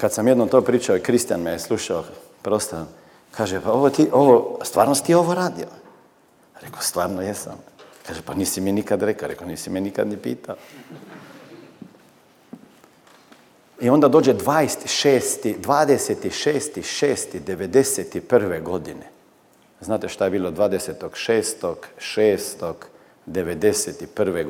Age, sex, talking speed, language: 50-69, male, 115 wpm, Croatian